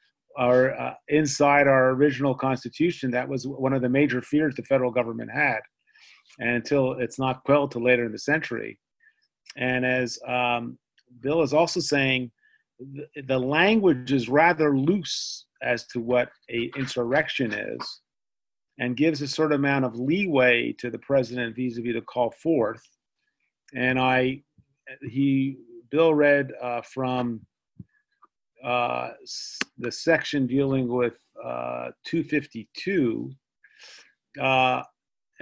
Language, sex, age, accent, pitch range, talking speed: English, male, 40-59, American, 125-150 Hz, 130 wpm